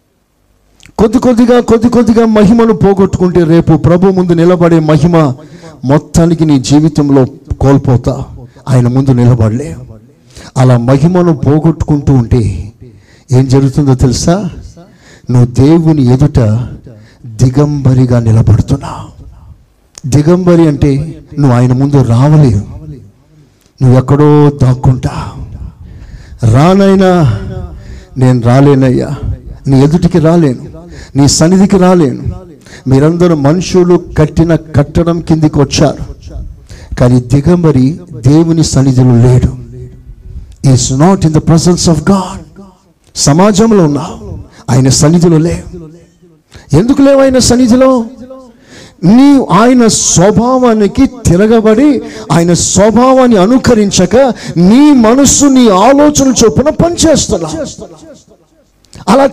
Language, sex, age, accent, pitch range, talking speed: Telugu, male, 50-69, native, 130-185 Hz, 85 wpm